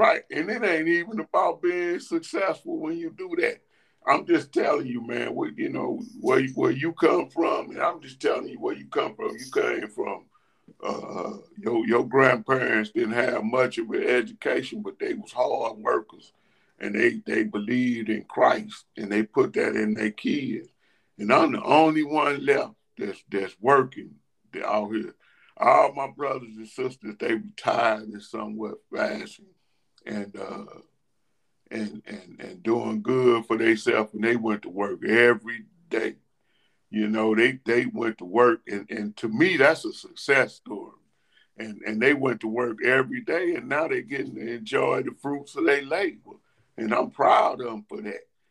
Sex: male